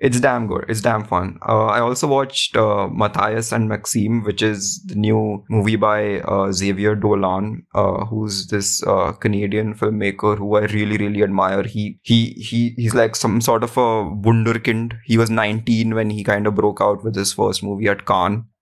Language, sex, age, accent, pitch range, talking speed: English, male, 20-39, Indian, 105-115 Hz, 190 wpm